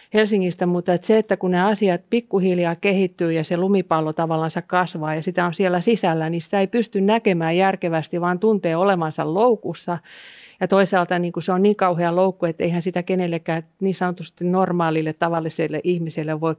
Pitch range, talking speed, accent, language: 160-185 Hz, 175 wpm, native, Finnish